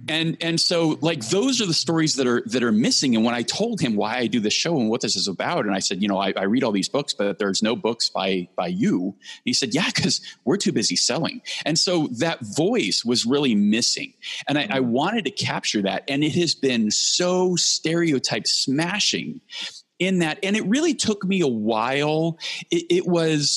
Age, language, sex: 30-49, English, male